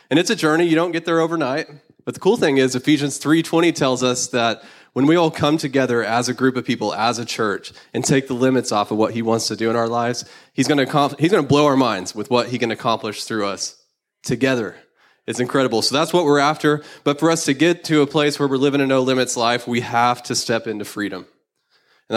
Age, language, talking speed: 20-39, English, 245 wpm